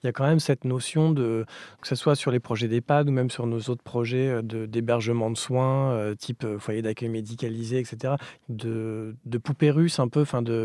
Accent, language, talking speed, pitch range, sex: French, French, 215 wpm, 115-145 Hz, male